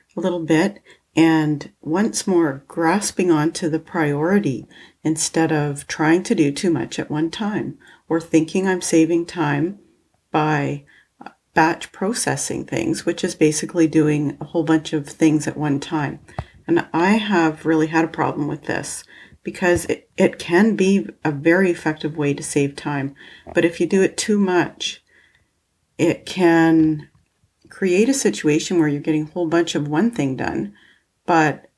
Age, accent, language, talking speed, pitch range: 40-59, American, English, 160 wpm, 155-175 Hz